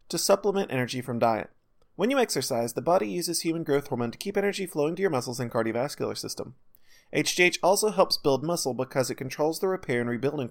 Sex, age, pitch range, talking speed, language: male, 30-49, 125-190 Hz, 205 wpm, English